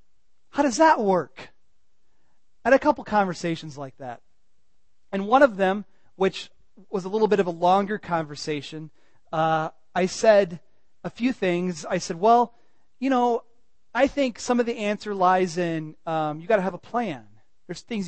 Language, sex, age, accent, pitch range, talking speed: English, male, 30-49, American, 170-235 Hz, 175 wpm